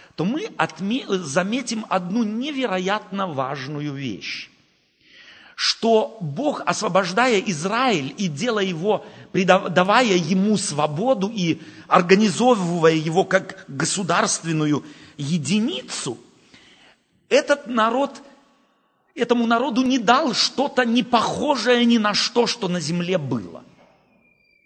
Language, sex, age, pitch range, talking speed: Russian, male, 40-59, 170-240 Hz, 90 wpm